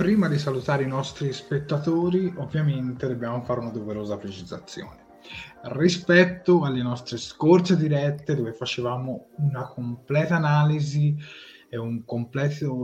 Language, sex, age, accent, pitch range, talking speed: Italian, male, 20-39, native, 120-150 Hz, 115 wpm